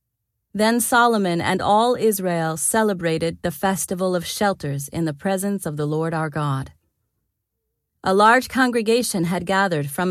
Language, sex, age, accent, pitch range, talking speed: English, female, 30-49, American, 160-205 Hz, 140 wpm